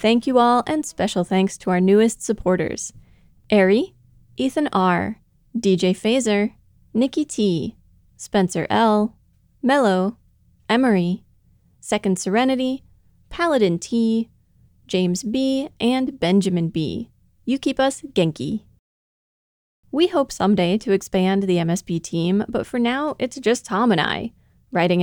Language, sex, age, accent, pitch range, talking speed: English, female, 30-49, American, 190-245 Hz, 120 wpm